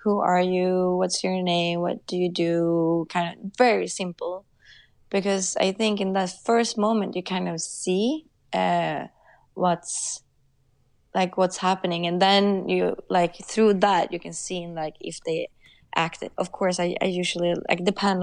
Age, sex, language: 20-39, female, English